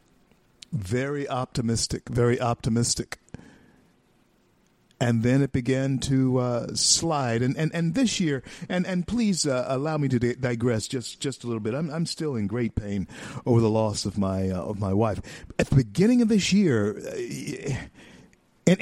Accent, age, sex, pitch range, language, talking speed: American, 50-69, male, 120-170 Hz, English, 165 wpm